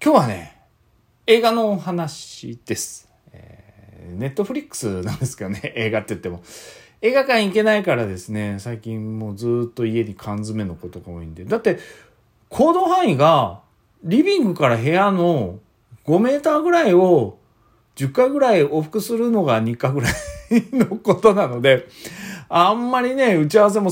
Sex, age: male, 40-59